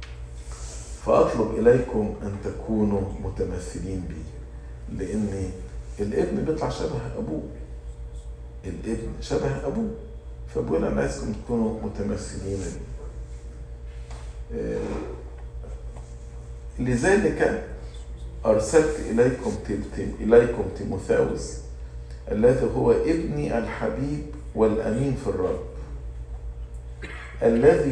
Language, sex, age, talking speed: English, male, 50-69, 70 wpm